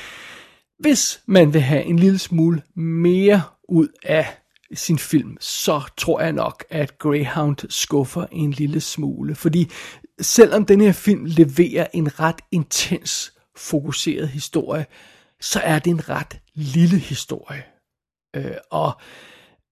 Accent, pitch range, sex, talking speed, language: native, 155-180 Hz, male, 125 wpm, Danish